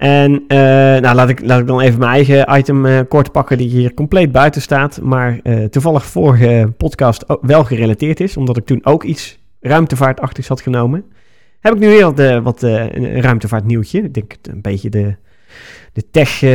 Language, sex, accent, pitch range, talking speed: Dutch, male, Dutch, 110-145 Hz, 180 wpm